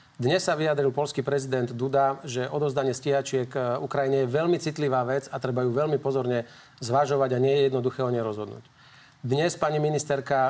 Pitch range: 130-145 Hz